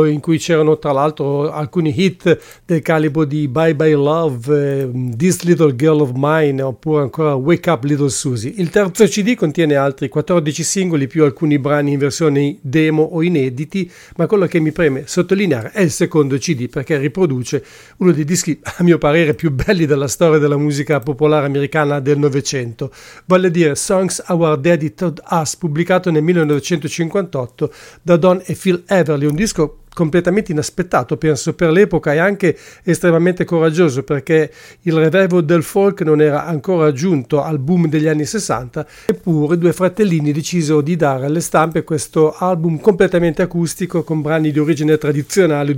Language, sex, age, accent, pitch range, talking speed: English, male, 50-69, Italian, 150-175 Hz, 165 wpm